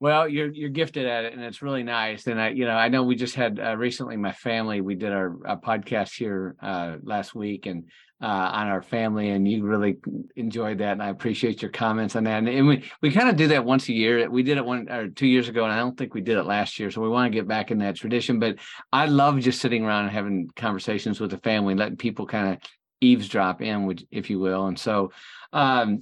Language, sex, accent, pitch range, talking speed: English, male, American, 105-130 Hz, 260 wpm